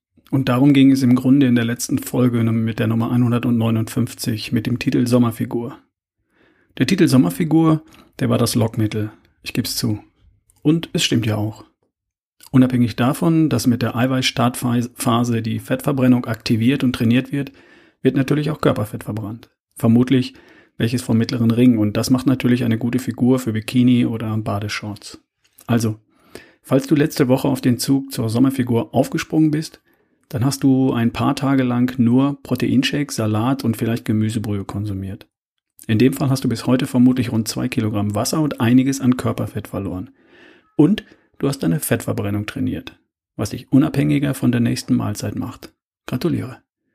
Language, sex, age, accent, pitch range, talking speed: German, male, 40-59, German, 115-135 Hz, 160 wpm